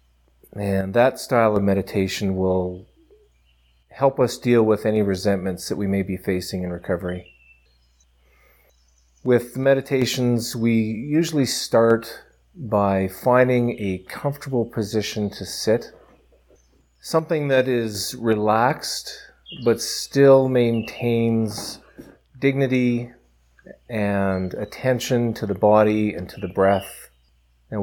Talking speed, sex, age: 105 wpm, male, 40-59